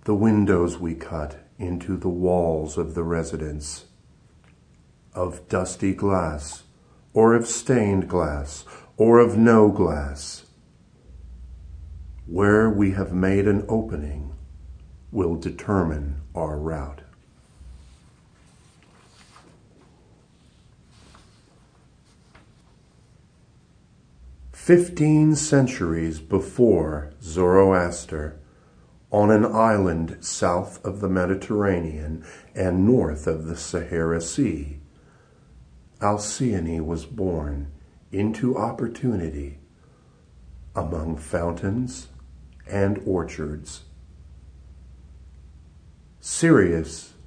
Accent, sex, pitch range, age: American, male, 75-100 Hz, 50-69